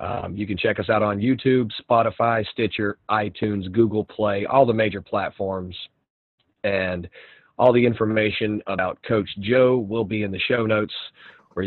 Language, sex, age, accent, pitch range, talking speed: English, male, 40-59, American, 95-110 Hz, 160 wpm